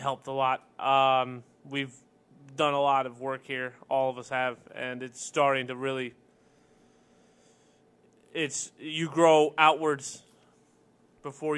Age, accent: 20-39, American